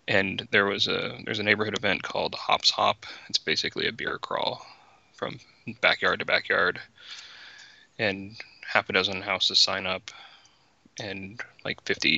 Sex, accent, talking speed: male, American, 150 wpm